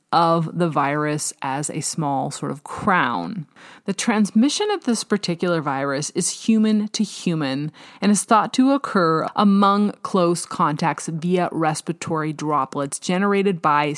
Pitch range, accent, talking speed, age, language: 155-195 Hz, American, 135 wpm, 30-49, English